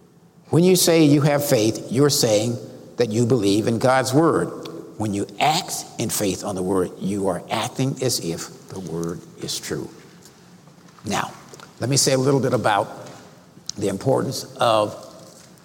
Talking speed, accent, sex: 160 wpm, American, male